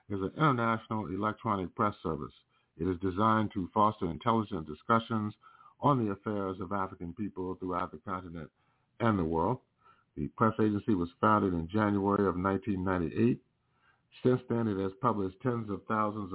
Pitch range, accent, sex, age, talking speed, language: 95-115 Hz, American, male, 50-69, 155 wpm, English